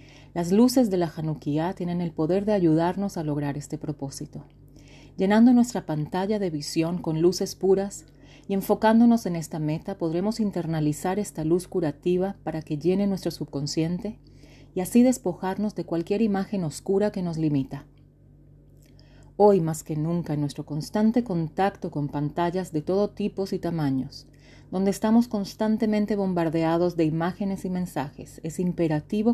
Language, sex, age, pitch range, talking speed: English, female, 30-49, 145-195 Hz, 145 wpm